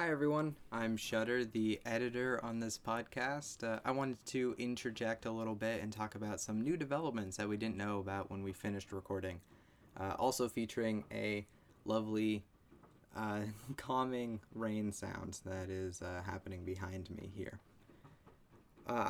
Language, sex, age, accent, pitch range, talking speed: English, male, 20-39, American, 105-130 Hz, 155 wpm